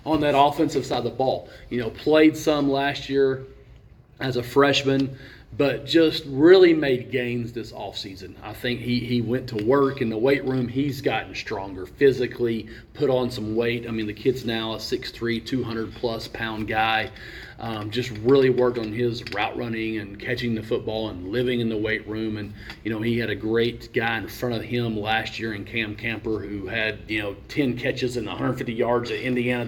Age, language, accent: 40-59, English, American